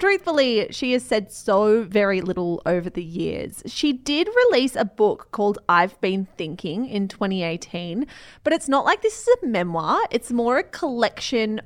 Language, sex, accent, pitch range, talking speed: English, female, Australian, 195-265 Hz, 170 wpm